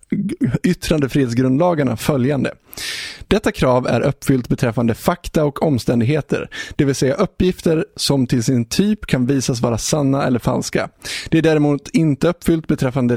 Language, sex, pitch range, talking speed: Swedish, male, 125-165 Hz, 140 wpm